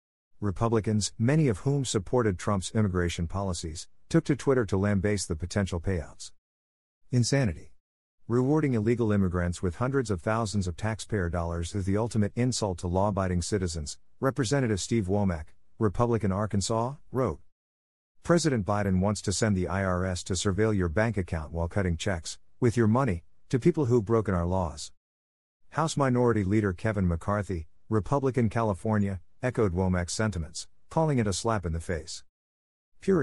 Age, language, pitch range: 50-69, English, 85-115 Hz